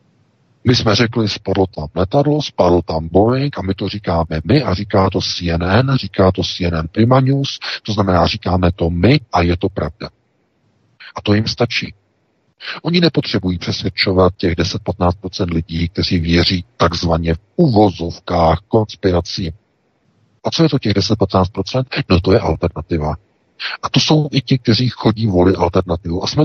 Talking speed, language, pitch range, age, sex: 160 wpm, Czech, 90-120 Hz, 50-69, male